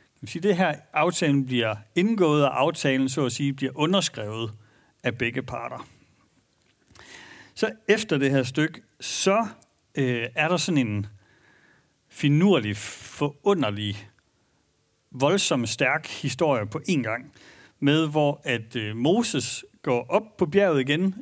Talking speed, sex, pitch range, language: 120 wpm, male, 125-175 Hz, Danish